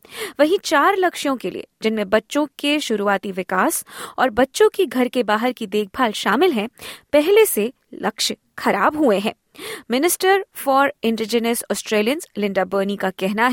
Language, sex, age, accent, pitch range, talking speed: Hindi, female, 20-39, native, 210-310 Hz, 150 wpm